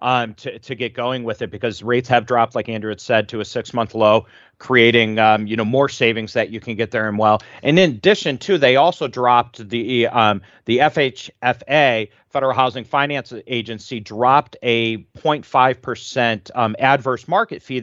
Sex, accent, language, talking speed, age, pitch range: male, American, English, 190 wpm, 40-59, 115-135 Hz